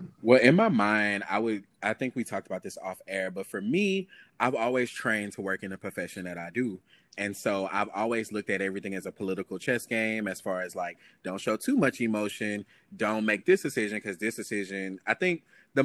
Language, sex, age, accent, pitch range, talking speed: English, male, 20-39, American, 100-125 Hz, 225 wpm